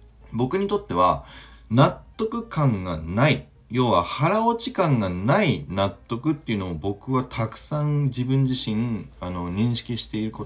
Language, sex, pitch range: Japanese, male, 90-145 Hz